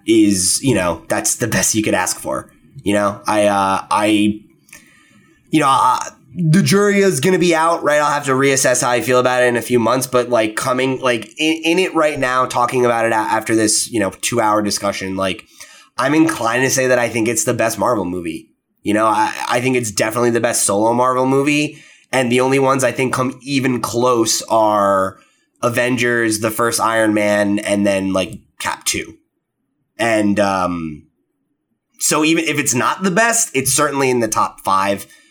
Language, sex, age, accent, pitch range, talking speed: English, male, 20-39, American, 100-135 Hz, 200 wpm